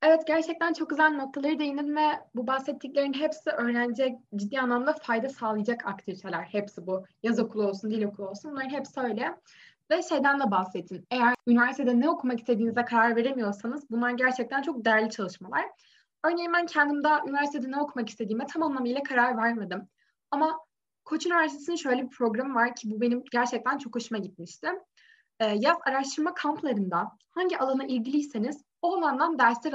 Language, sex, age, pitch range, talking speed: Turkish, female, 10-29, 225-285 Hz, 155 wpm